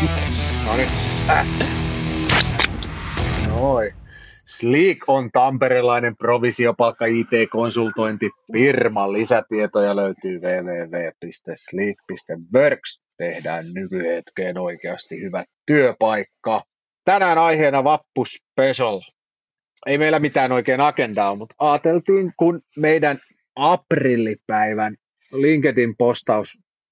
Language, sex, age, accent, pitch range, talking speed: Finnish, male, 30-49, native, 110-140 Hz, 65 wpm